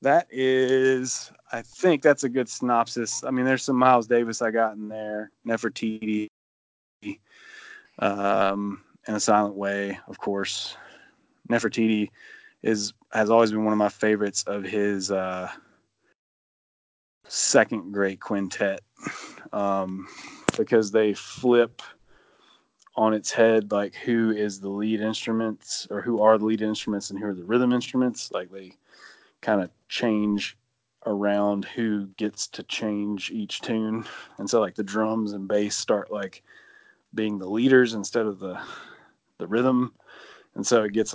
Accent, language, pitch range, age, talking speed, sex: American, English, 100-115 Hz, 20-39, 145 wpm, male